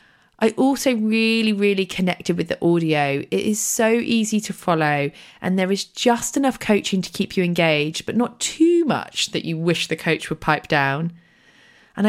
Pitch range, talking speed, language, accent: 160-215 Hz, 185 wpm, English, British